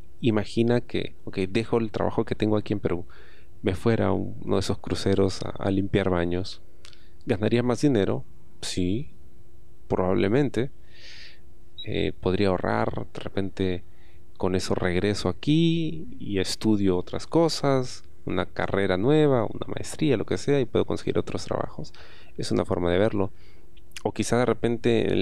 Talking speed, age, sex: 150 wpm, 30-49, male